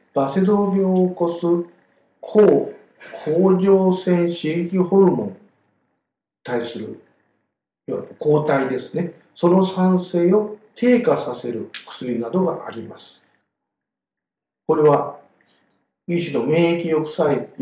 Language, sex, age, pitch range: Japanese, male, 50-69, 140-185 Hz